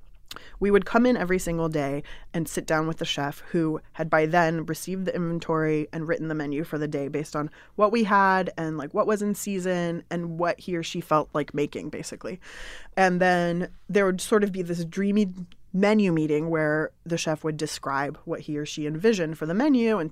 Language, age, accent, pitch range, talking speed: English, 20-39, American, 160-205 Hz, 215 wpm